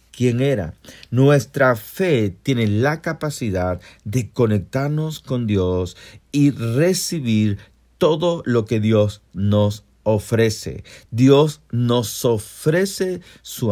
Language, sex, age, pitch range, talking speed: Spanish, male, 40-59, 100-130 Hz, 100 wpm